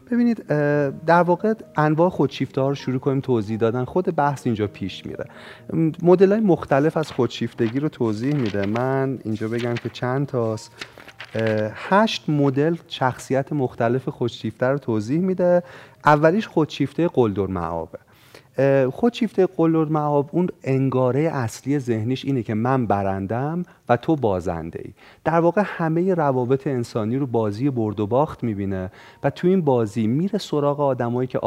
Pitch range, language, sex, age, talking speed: 115-155 Hz, Persian, male, 30-49, 140 wpm